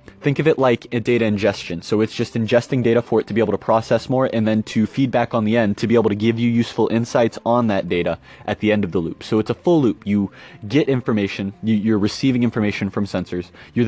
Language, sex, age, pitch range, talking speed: English, male, 20-39, 105-120 Hz, 250 wpm